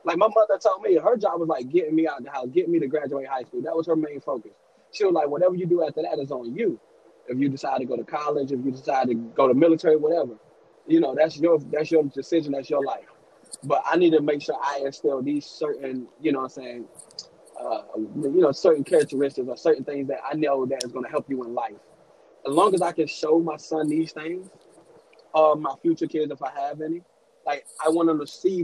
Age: 20-39